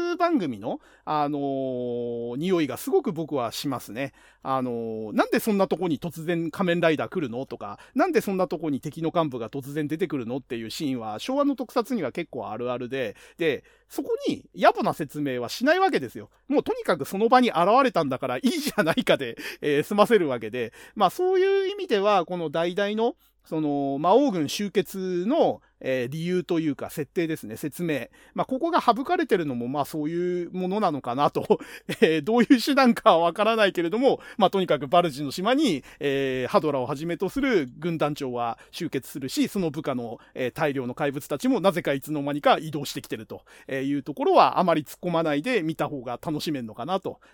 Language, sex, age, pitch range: Japanese, male, 40-59, 140-225 Hz